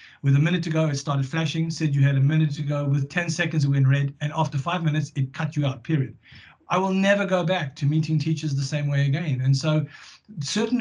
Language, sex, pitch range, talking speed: English, male, 140-165 Hz, 250 wpm